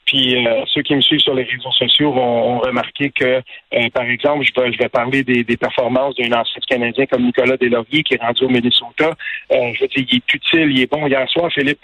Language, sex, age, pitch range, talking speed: French, male, 50-69, 125-205 Hz, 250 wpm